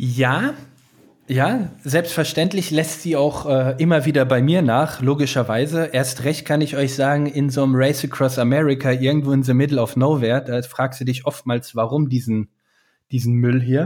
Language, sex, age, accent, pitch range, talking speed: German, male, 20-39, German, 130-165 Hz, 180 wpm